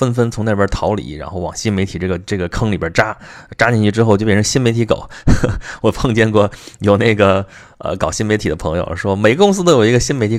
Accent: native